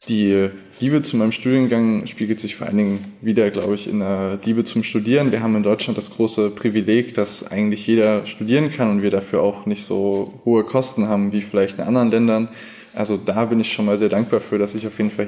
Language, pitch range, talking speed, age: German, 105-115 Hz, 230 wpm, 20-39